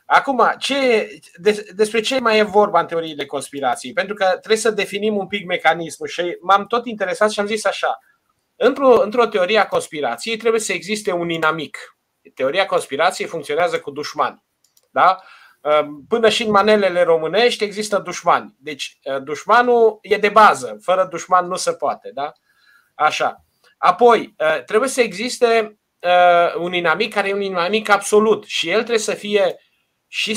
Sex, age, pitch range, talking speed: male, 30-49, 175-225 Hz, 155 wpm